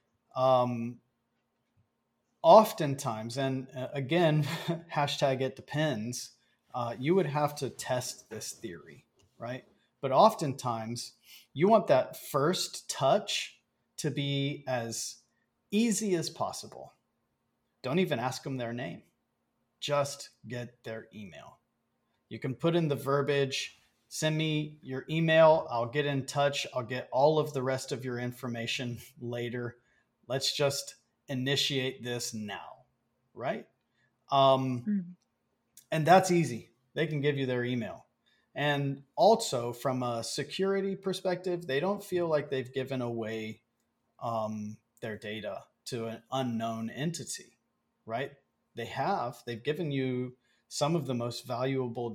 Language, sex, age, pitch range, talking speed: English, male, 30-49, 120-150 Hz, 125 wpm